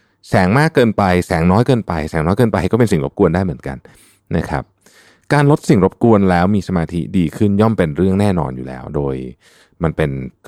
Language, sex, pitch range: Thai, male, 85-115 Hz